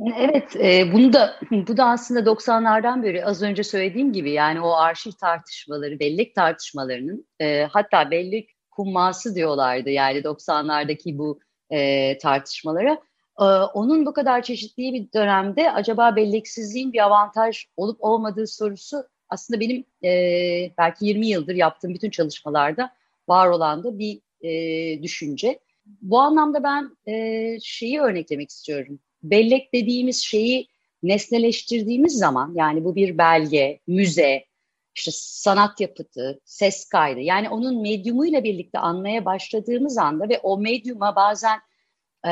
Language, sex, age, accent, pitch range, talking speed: Turkish, female, 40-59, native, 170-245 Hz, 130 wpm